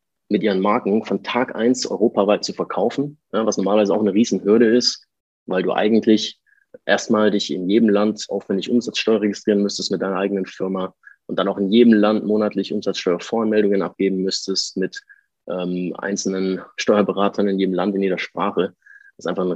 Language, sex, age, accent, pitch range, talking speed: German, male, 20-39, German, 95-105 Hz, 170 wpm